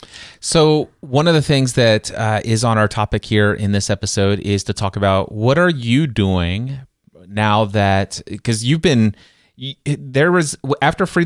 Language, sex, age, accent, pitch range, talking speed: English, male, 30-49, American, 110-135 Hz, 170 wpm